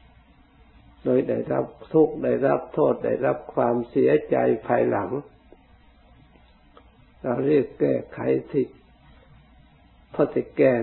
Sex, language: male, Thai